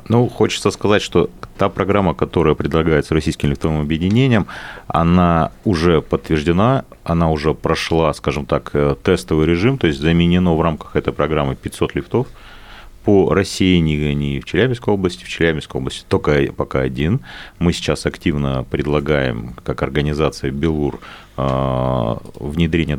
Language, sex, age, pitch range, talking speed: Russian, male, 40-59, 70-95 Hz, 130 wpm